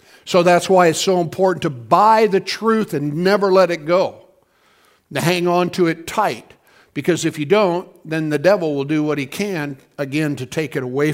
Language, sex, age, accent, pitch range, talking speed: English, male, 60-79, American, 150-195 Hz, 205 wpm